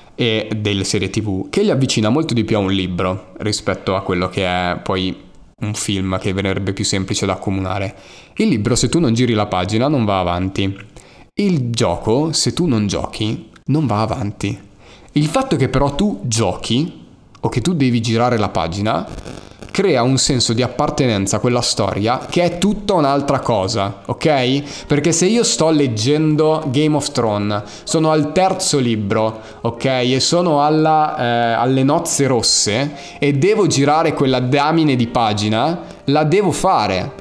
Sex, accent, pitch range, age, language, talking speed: male, native, 105-150 Hz, 20-39, Italian, 165 wpm